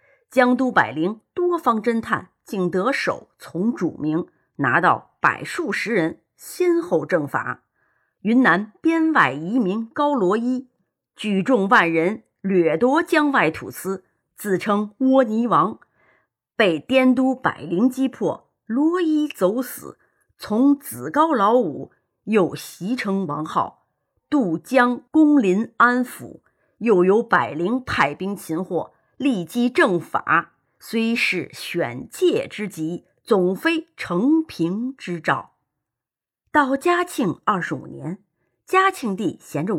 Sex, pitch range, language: female, 180-290 Hz, Chinese